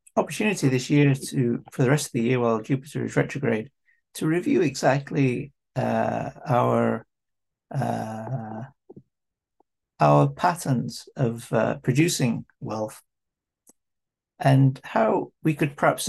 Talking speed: 115 wpm